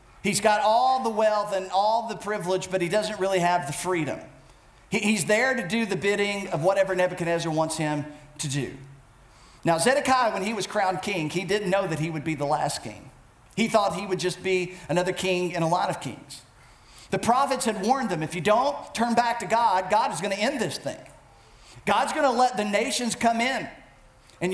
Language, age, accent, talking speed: English, 40-59, American, 215 wpm